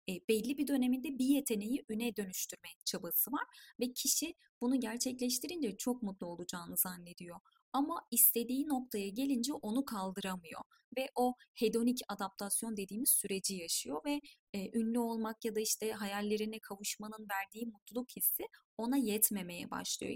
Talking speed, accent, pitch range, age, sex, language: 135 wpm, native, 200-255 Hz, 30-49, female, Turkish